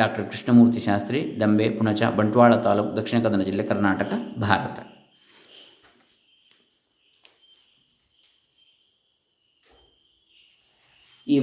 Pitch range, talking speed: 115-145 Hz, 70 wpm